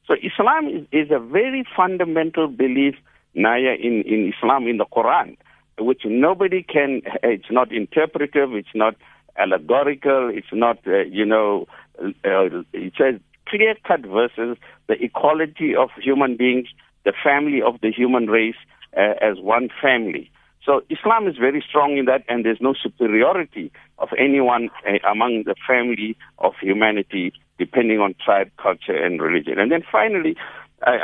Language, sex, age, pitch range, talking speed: English, male, 60-79, 120-160 Hz, 150 wpm